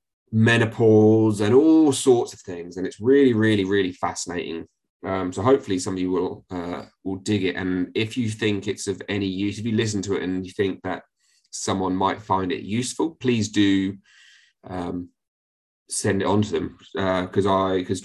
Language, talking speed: English, 190 wpm